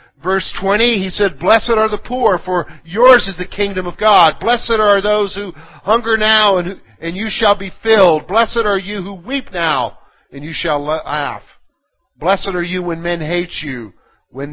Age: 50-69